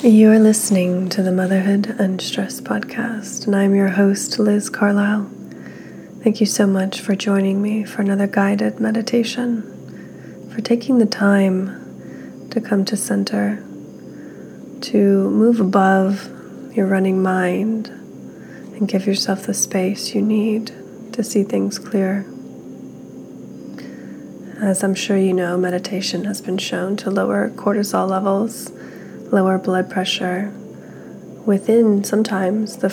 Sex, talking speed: female, 125 wpm